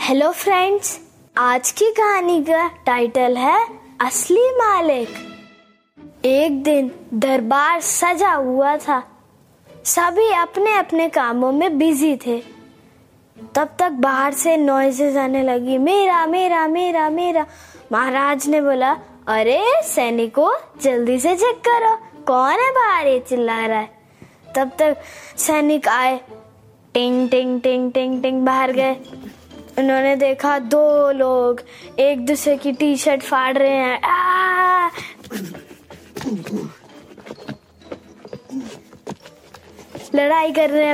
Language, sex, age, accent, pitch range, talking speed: Hindi, female, 20-39, native, 265-340 Hz, 105 wpm